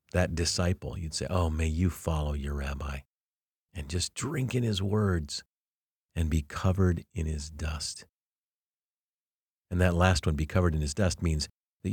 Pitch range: 80-100 Hz